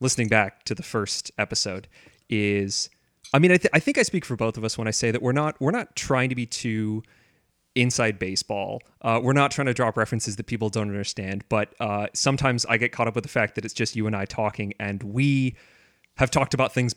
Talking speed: 235 wpm